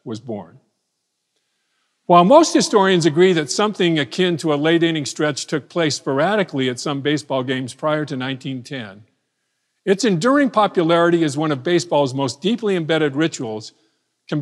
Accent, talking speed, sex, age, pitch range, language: American, 150 wpm, male, 50-69, 135-180 Hz, English